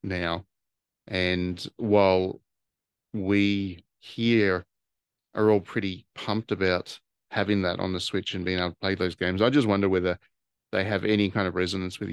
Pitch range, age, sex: 95-110 Hz, 30-49, male